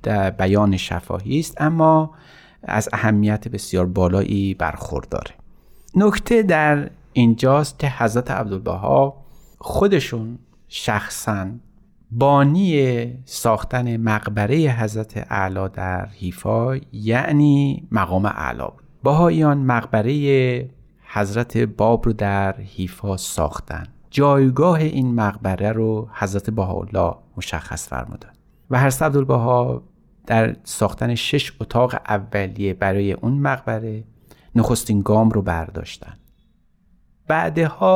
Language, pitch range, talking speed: Persian, 100-135 Hz, 95 wpm